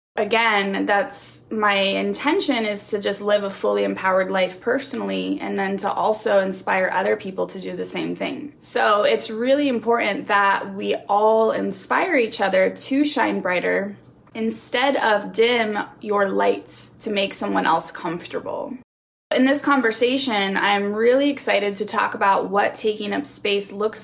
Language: English